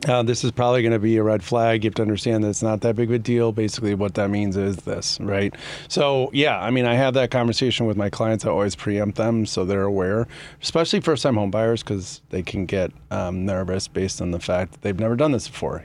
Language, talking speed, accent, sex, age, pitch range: English, 255 wpm, American, male, 30-49, 100-125 Hz